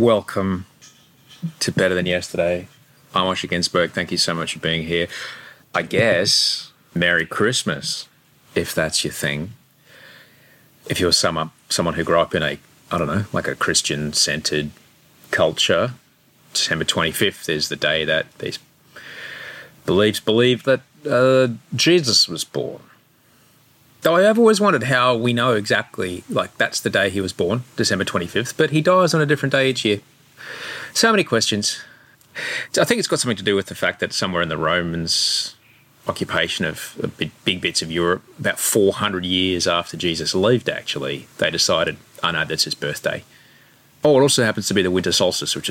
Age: 30-49